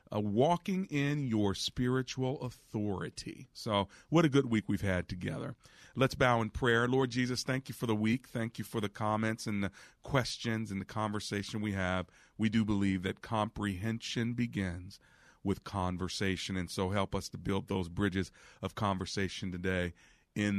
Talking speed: 170 wpm